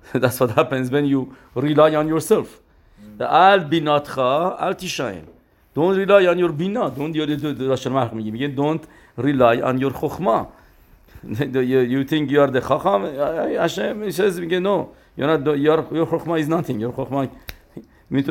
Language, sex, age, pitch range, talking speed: English, male, 50-69, 115-145 Hz, 100 wpm